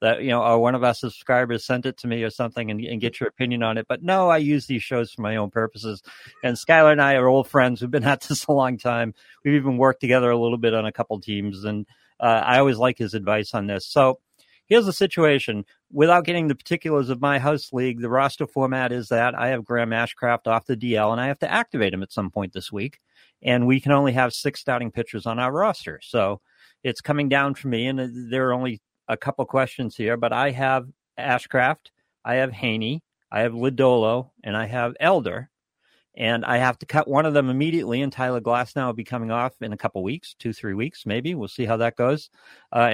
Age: 50-69